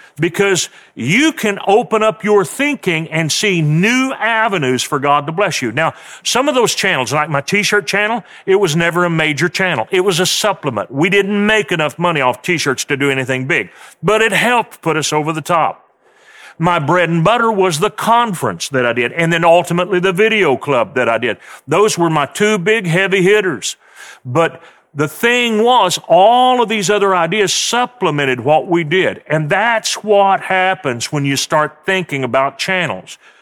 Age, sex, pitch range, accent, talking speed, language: 40-59, male, 145-200 Hz, American, 185 wpm, English